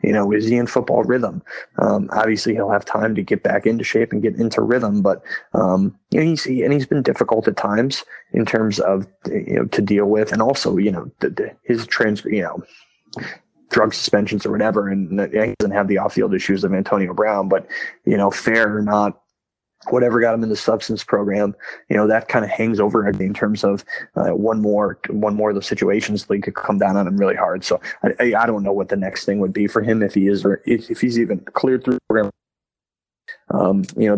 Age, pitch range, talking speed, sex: 20-39, 100-115 Hz, 225 wpm, male